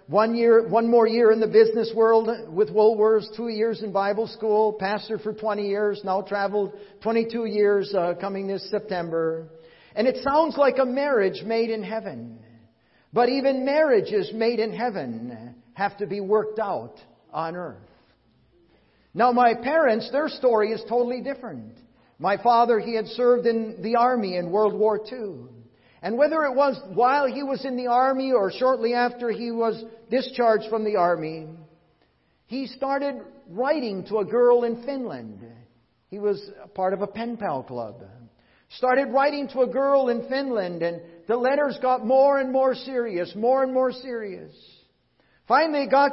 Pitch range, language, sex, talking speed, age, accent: 200-250 Hz, English, male, 165 wpm, 50-69, American